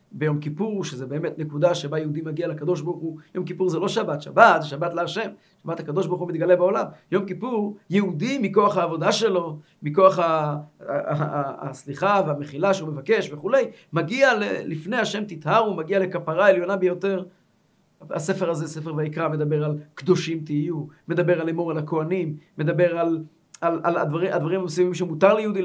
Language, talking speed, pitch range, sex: Hebrew, 155 wpm, 155-190 Hz, male